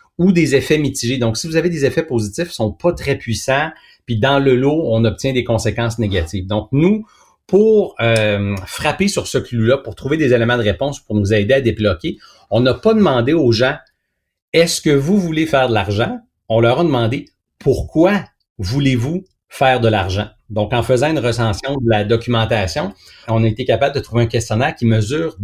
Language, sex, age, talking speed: French, male, 40-59, 210 wpm